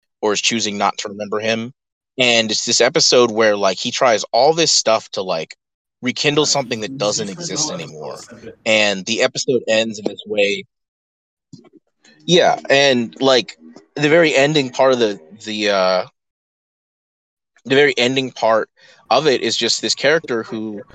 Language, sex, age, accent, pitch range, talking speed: English, male, 20-39, American, 95-130 Hz, 160 wpm